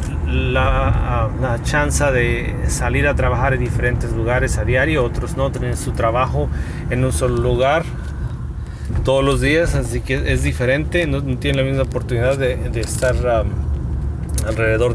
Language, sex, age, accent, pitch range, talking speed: Spanish, male, 30-49, Mexican, 110-130 Hz, 160 wpm